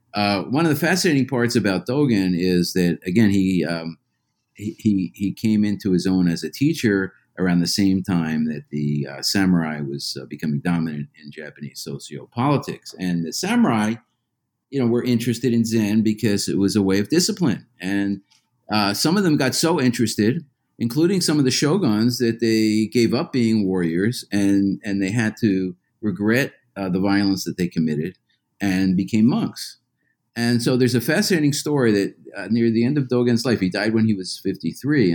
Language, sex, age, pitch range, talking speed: English, male, 50-69, 90-120 Hz, 185 wpm